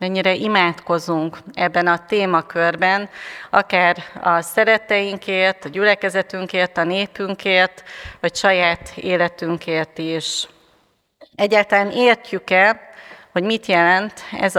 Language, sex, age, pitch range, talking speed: Hungarian, female, 30-49, 185-210 Hz, 90 wpm